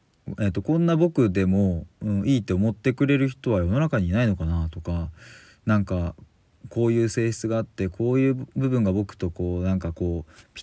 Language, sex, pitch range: Japanese, male, 95-125 Hz